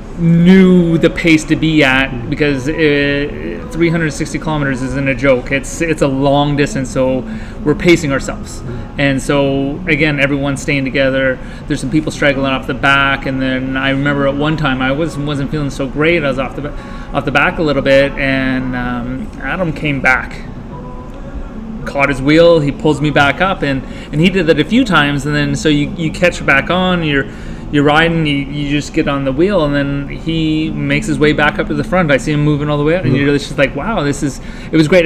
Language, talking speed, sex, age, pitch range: English, 215 wpm, male, 30-49, 130-155 Hz